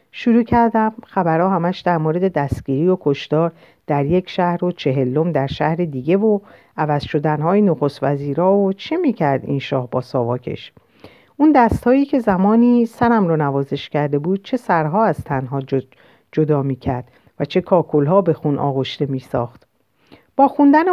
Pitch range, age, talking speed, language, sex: 140-210 Hz, 50-69, 155 wpm, Persian, female